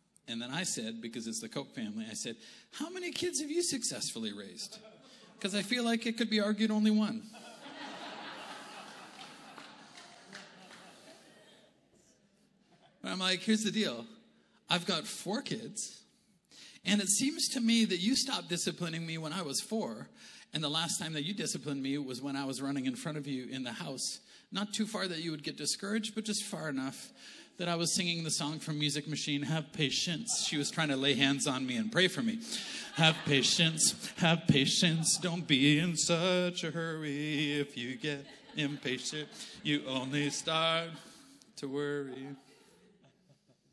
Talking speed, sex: 175 wpm, male